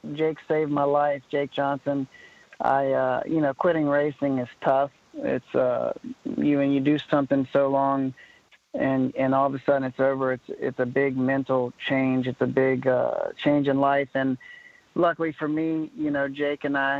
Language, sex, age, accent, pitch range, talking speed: English, male, 40-59, American, 135-145 Hz, 185 wpm